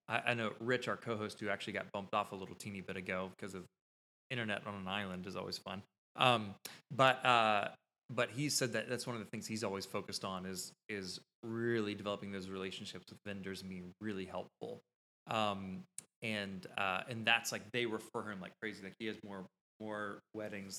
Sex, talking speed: male, 200 wpm